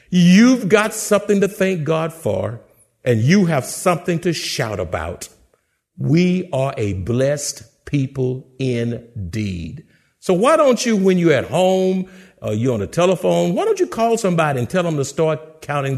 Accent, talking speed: American, 165 wpm